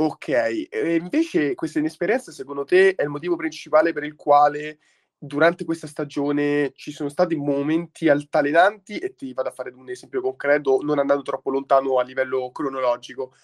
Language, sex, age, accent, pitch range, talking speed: Italian, male, 20-39, native, 130-165 Hz, 165 wpm